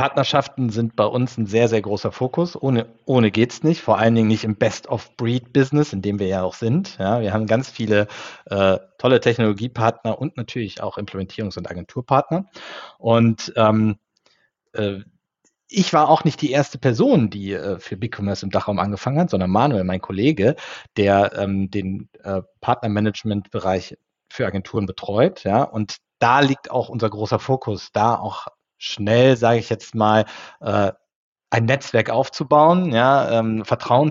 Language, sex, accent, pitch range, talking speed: German, male, German, 110-135 Hz, 160 wpm